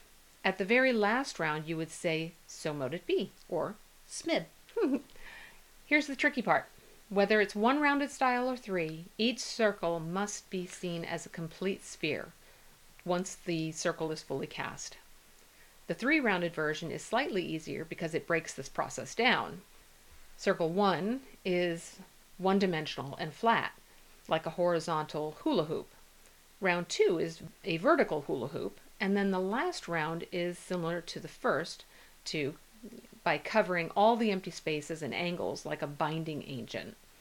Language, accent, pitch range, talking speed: English, American, 165-220 Hz, 150 wpm